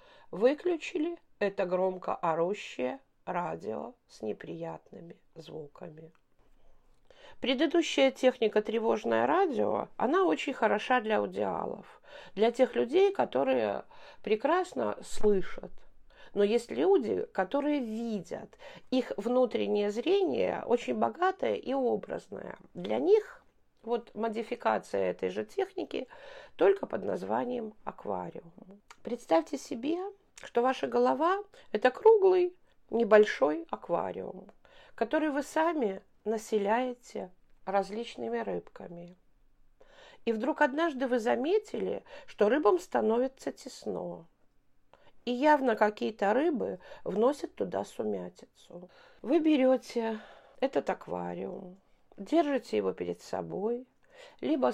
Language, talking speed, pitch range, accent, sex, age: Russian, 95 wpm, 210-330 Hz, native, female, 50-69